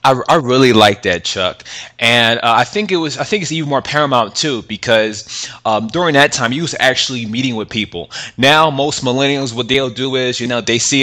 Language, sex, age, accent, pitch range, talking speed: English, male, 20-39, American, 110-130 Hz, 225 wpm